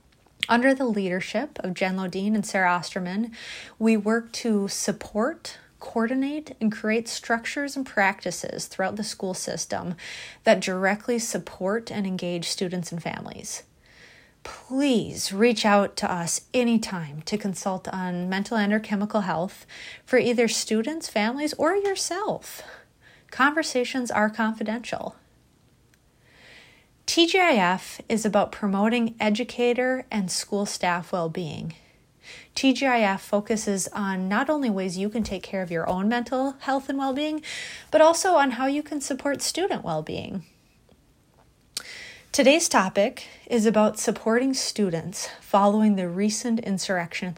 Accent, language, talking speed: American, English, 125 wpm